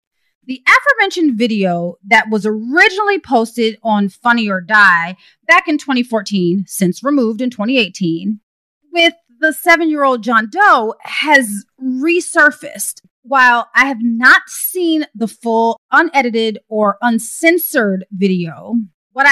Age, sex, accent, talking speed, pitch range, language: 30-49, female, American, 115 wpm, 200-280 Hz, English